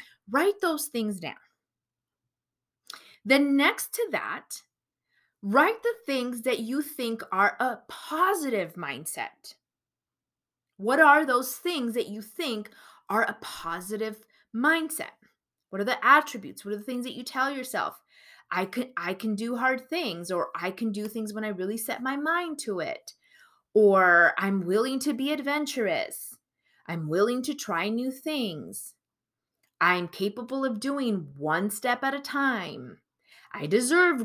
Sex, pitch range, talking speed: female, 205-285 Hz, 145 wpm